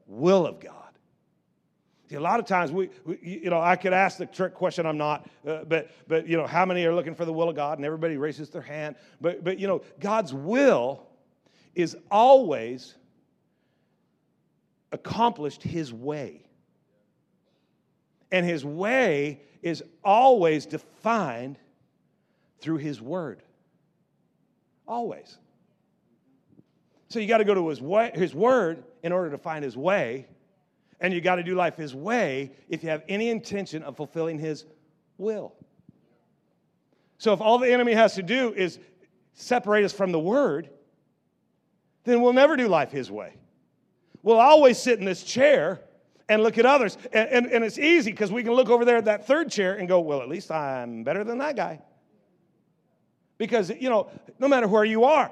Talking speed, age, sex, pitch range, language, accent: 170 wpm, 50-69, male, 160-225 Hz, English, American